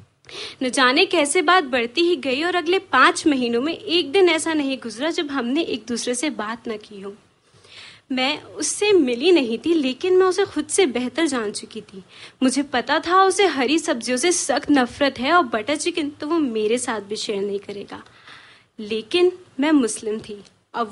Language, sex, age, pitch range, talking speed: Hindi, female, 30-49, 235-325 Hz, 190 wpm